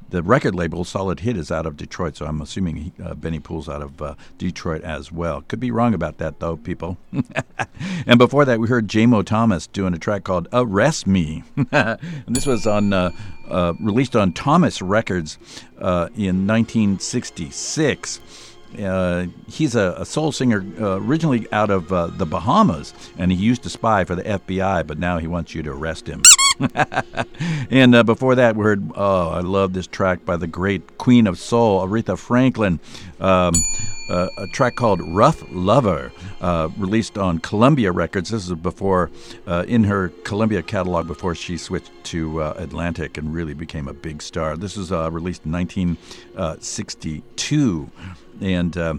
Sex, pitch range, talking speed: male, 85-115 Hz, 170 wpm